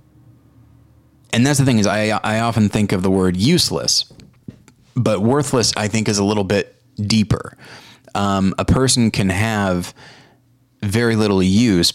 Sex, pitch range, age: male, 95-120 Hz, 20-39